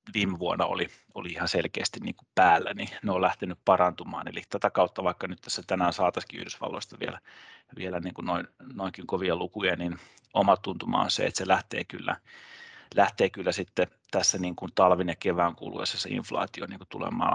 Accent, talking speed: native, 175 wpm